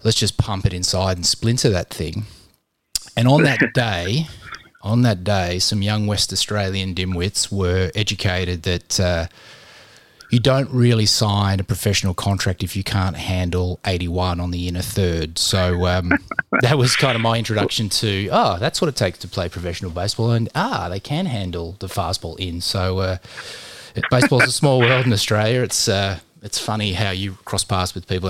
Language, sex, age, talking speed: English, male, 20-39, 180 wpm